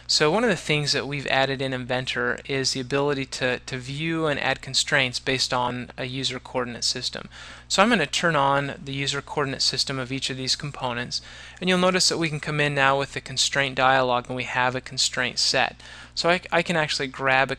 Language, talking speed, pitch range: English, 220 wpm, 125-140 Hz